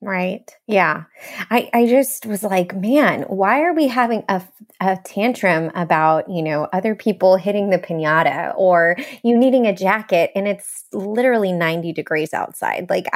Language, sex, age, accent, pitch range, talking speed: English, female, 20-39, American, 180-235 Hz, 160 wpm